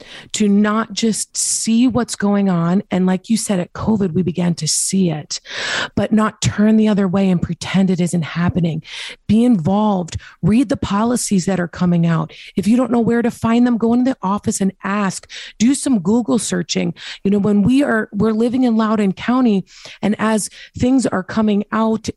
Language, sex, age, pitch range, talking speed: English, female, 30-49, 185-235 Hz, 195 wpm